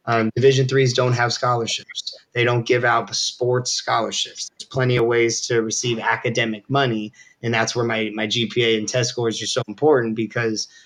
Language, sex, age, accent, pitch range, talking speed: English, male, 20-39, American, 115-125 Hz, 190 wpm